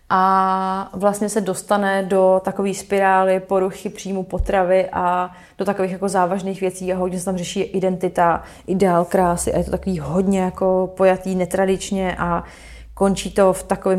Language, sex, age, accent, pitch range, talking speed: Czech, female, 20-39, native, 185-200 Hz, 160 wpm